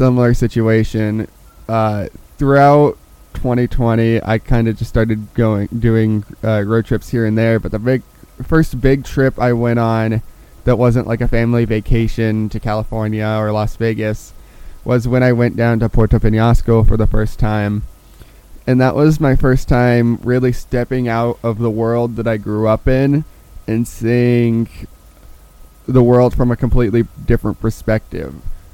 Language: English